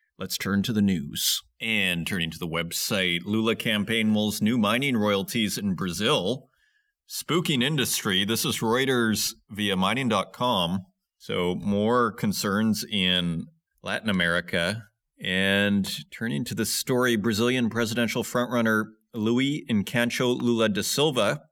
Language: English